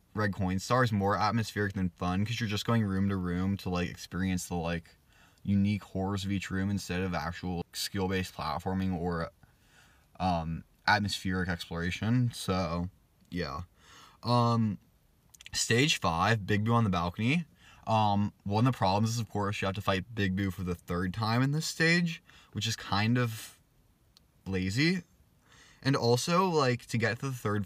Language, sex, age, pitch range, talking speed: English, male, 20-39, 95-120 Hz, 170 wpm